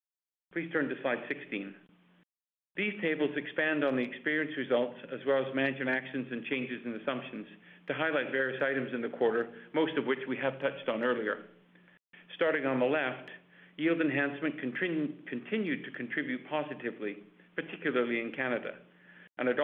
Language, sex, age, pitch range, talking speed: English, male, 50-69, 125-150 Hz, 155 wpm